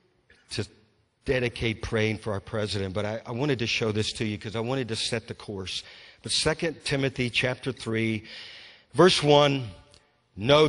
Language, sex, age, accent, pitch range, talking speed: English, male, 50-69, American, 120-170 Hz, 170 wpm